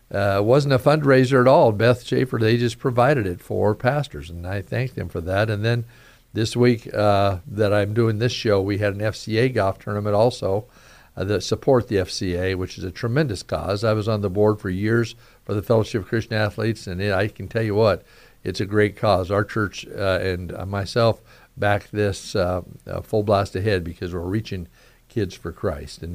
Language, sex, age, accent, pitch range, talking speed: English, male, 60-79, American, 100-125 Hz, 210 wpm